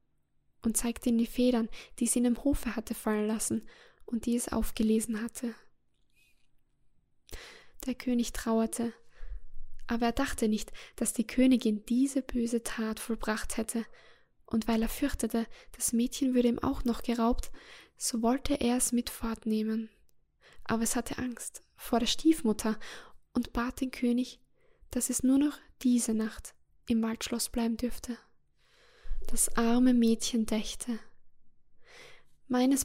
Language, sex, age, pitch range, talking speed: German, female, 10-29, 225-255 Hz, 140 wpm